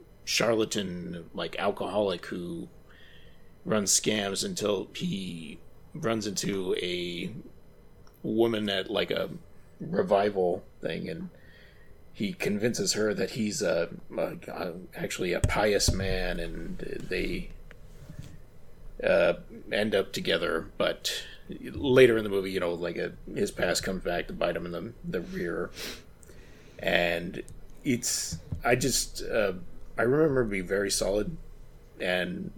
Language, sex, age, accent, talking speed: English, male, 30-49, American, 125 wpm